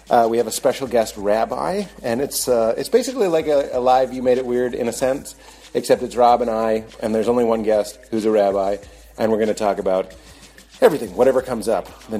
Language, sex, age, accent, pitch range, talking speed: English, male, 30-49, American, 110-150 Hz, 230 wpm